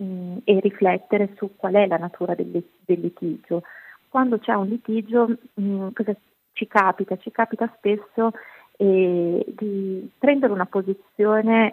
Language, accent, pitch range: Italian, native, 185-225 Hz